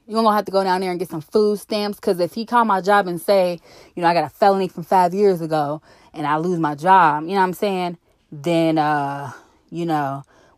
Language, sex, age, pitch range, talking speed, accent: English, female, 20-39, 180-235 Hz, 260 wpm, American